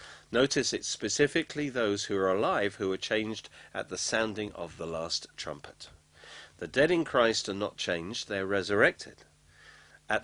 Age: 50-69